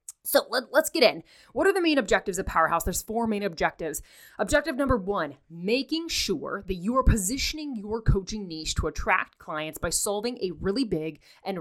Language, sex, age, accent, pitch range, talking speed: English, female, 20-39, American, 175-250 Hz, 185 wpm